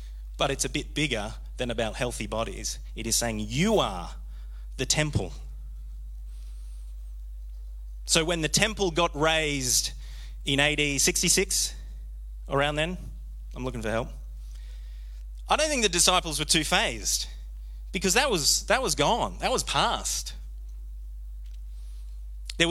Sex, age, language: male, 30-49, English